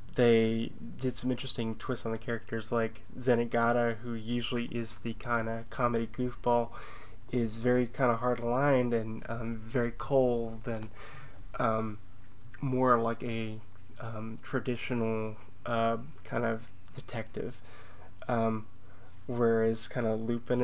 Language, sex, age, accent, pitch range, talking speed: English, male, 20-39, American, 110-125 Hz, 125 wpm